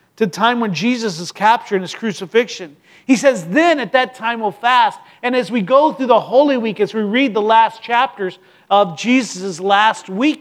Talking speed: 210 wpm